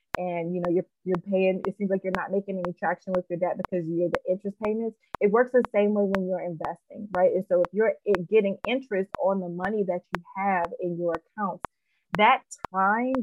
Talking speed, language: 220 wpm, English